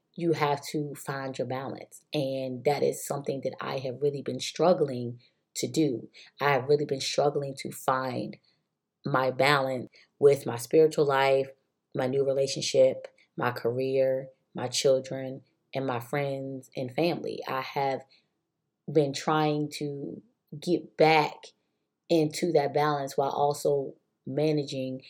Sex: female